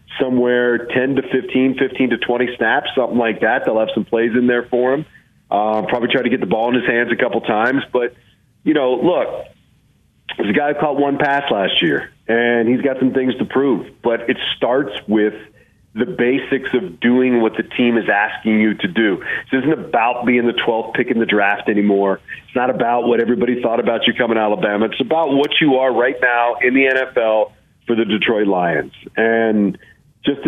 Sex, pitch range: male, 110-135 Hz